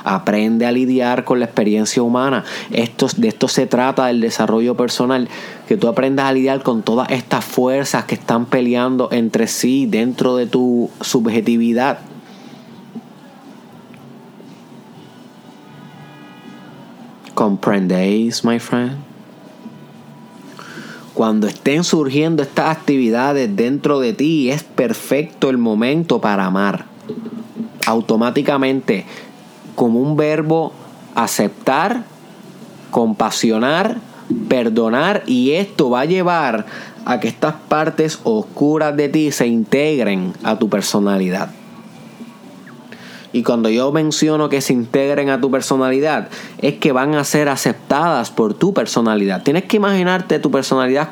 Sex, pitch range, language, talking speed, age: male, 120-165 Hz, Spanish, 115 wpm, 30-49